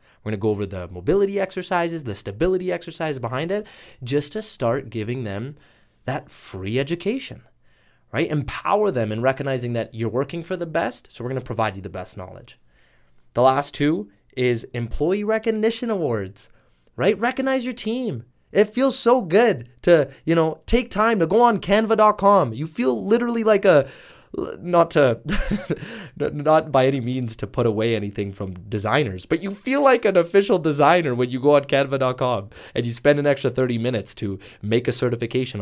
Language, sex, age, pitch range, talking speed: English, male, 20-39, 115-170 Hz, 175 wpm